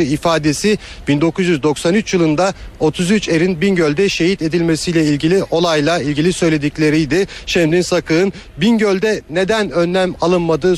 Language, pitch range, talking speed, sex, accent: Turkish, 155-185 Hz, 100 wpm, male, native